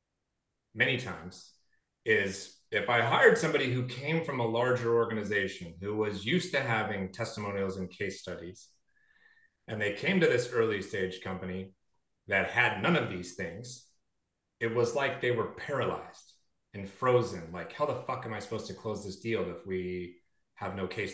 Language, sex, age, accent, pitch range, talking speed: English, male, 30-49, American, 95-135 Hz, 170 wpm